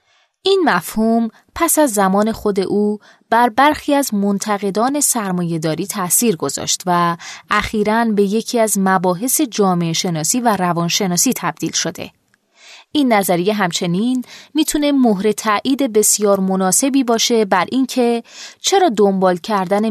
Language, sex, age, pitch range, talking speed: Persian, female, 20-39, 185-245 Hz, 120 wpm